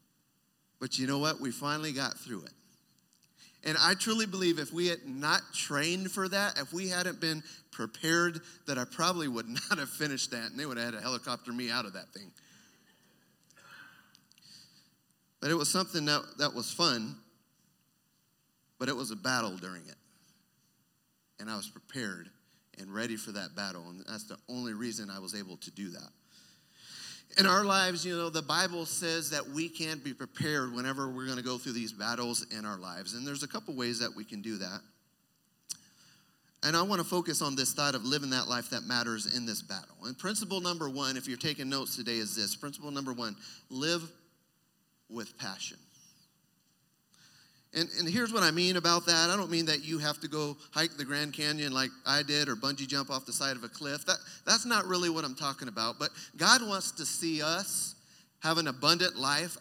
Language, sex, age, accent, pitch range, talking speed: English, male, 40-59, American, 125-170 Hz, 200 wpm